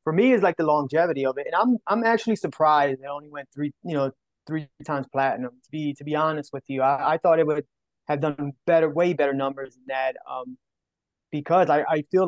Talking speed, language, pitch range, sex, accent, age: 230 wpm, English, 135-160 Hz, male, American, 20-39